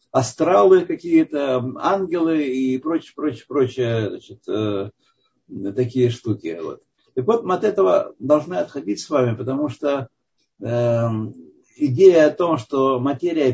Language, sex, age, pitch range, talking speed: Russian, male, 60-79, 130-180 Hz, 125 wpm